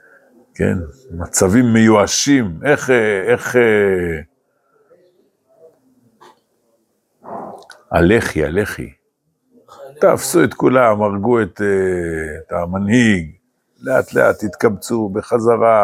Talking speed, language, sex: 70 wpm, Hebrew, male